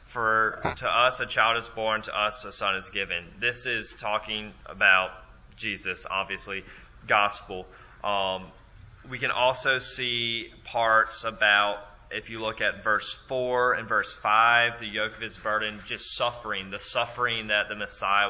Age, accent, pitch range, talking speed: 20-39, American, 100-115 Hz, 155 wpm